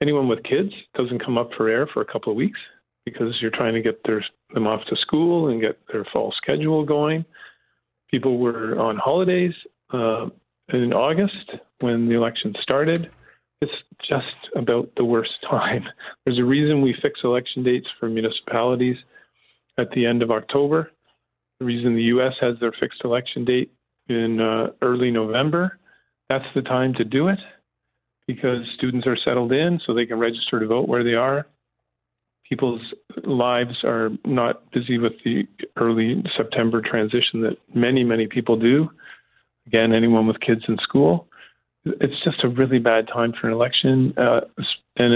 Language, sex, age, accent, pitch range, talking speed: English, male, 40-59, American, 115-135 Hz, 165 wpm